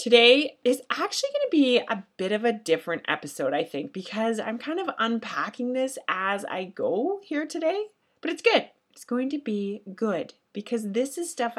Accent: American